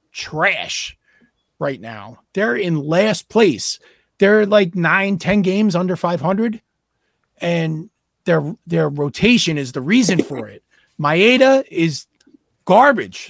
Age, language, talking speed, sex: 40-59, English, 115 wpm, male